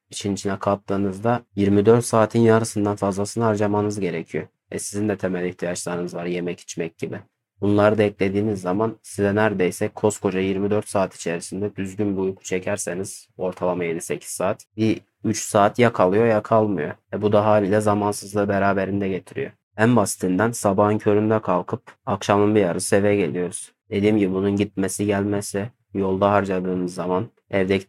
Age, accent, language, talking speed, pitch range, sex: 30-49, native, Turkish, 145 wpm, 95-110 Hz, male